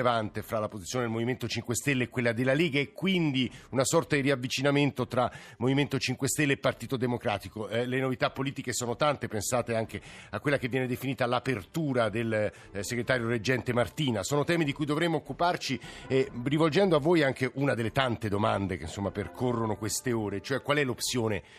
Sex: male